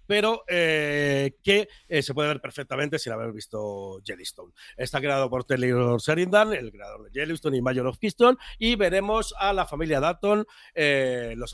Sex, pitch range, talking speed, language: male, 135-180 Hz, 170 wpm, Spanish